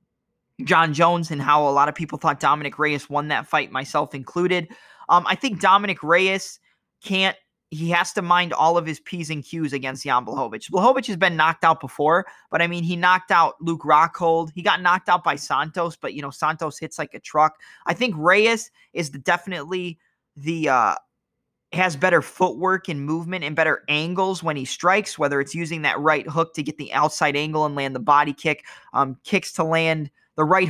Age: 20-39